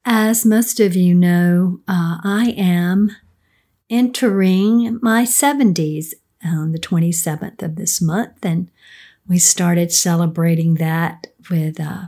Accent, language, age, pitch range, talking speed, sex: American, English, 50-69, 170-215 Hz, 120 wpm, female